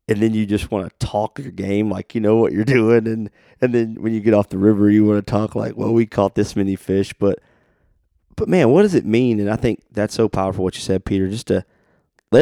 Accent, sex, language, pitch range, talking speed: American, male, English, 95-105 Hz, 265 wpm